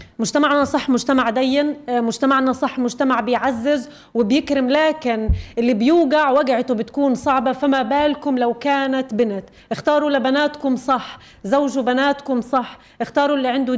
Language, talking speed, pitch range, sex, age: Arabic, 125 wpm, 250-290 Hz, female, 30-49